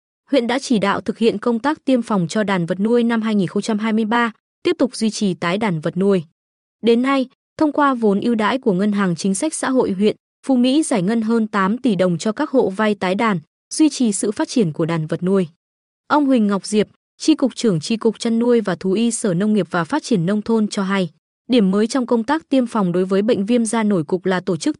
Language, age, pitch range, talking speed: Vietnamese, 20-39, 195-240 Hz, 250 wpm